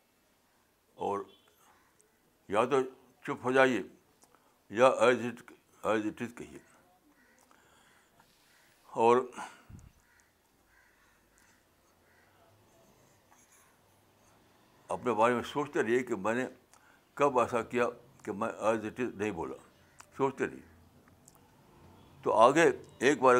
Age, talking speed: 60-79, 90 wpm